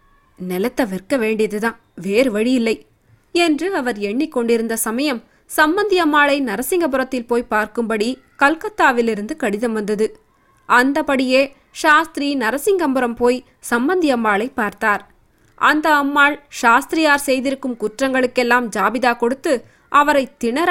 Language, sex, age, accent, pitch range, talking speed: Tamil, female, 20-39, native, 220-280 Hz, 90 wpm